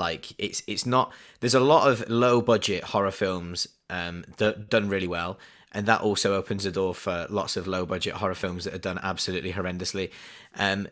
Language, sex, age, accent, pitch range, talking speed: English, male, 20-39, British, 90-115 Hz, 190 wpm